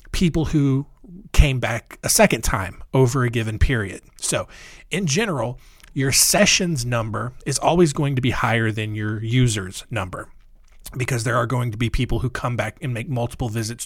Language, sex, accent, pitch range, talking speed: English, male, American, 115-150 Hz, 175 wpm